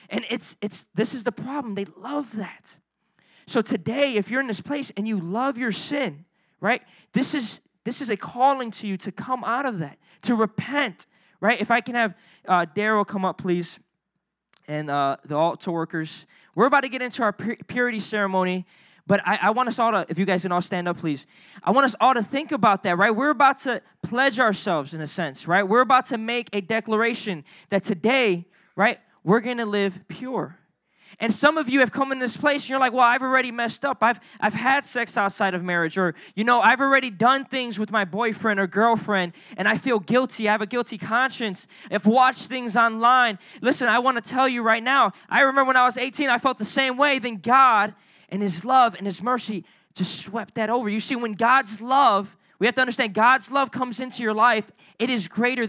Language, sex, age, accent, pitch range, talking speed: English, male, 20-39, American, 195-255 Hz, 220 wpm